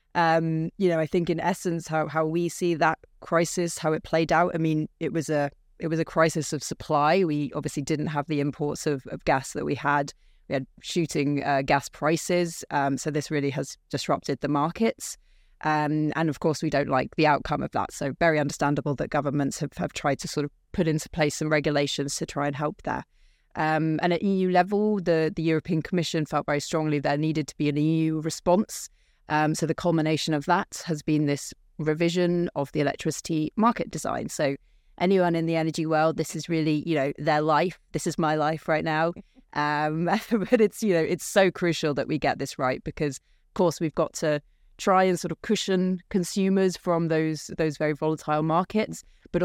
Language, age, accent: English, 30-49, British